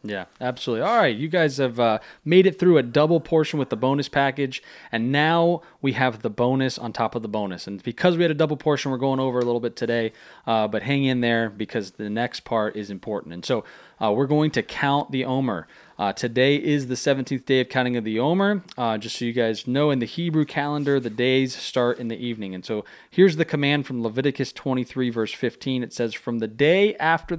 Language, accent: English, American